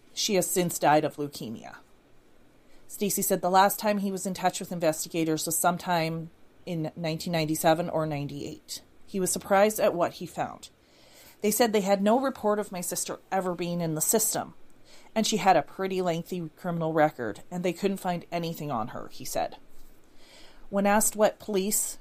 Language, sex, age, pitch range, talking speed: English, female, 30-49, 165-200 Hz, 175 wpm